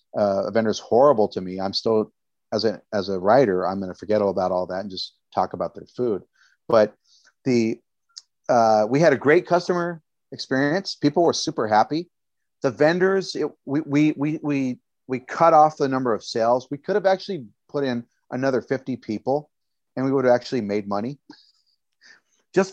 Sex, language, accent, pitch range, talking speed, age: male, English, American, 110-140 Hz, 190 wpm, 40-59